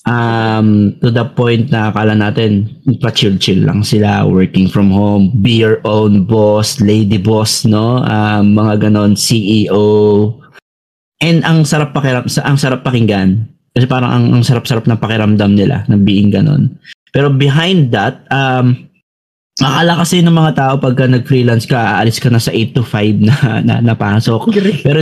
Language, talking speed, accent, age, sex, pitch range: Filipino, 160 wpm, native, 20-39, male, 110-135 Hz